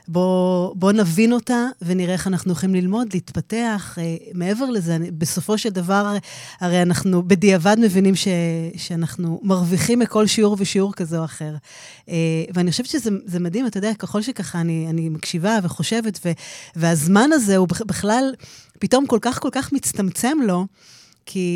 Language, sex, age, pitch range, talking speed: Hebrew, female, 20-39, 175-220 Hz, 160 wpm